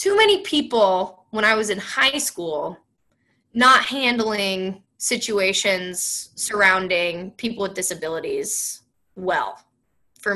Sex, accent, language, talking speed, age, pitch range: female, American, English, 105 wpm, 20-39, 185-230 Hz